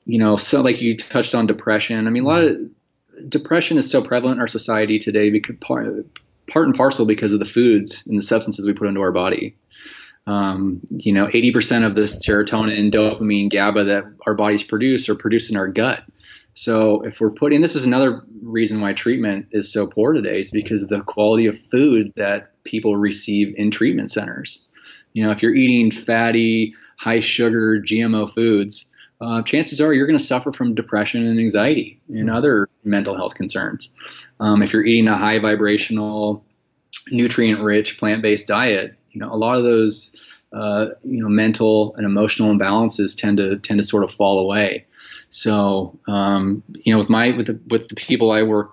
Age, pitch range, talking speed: 20-39, 105-115 Hz, 195 wpm